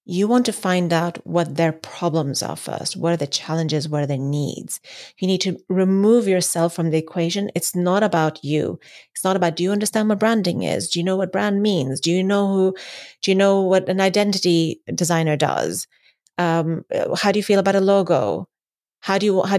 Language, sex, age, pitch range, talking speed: English, female, 30-49, 170-225 Hz, 210 wpm